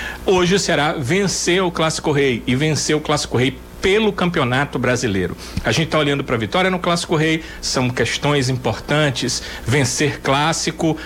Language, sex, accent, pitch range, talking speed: Portuguese, male, Brazilian, 130-165 Hz, 155 wpm